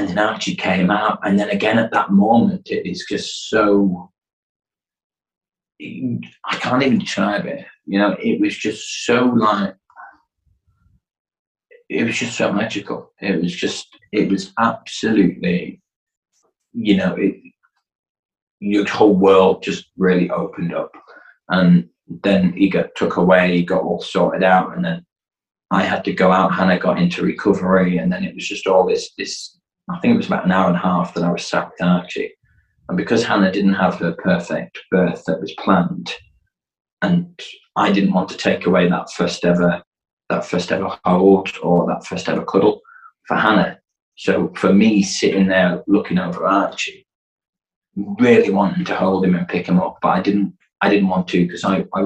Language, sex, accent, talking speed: English, male, British, 180 wpm